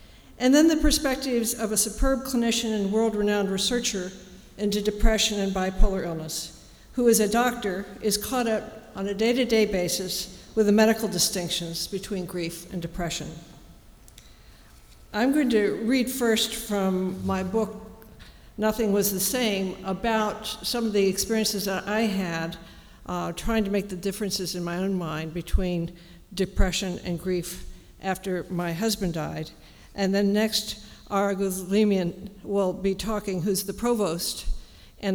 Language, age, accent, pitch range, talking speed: English, 60-79, American, 180-220 Hz, 145 wpm